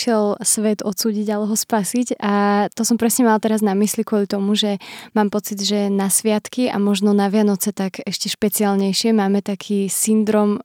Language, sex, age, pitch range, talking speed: Slovak, female, 20-39, 205-230 Hz, 175 wpm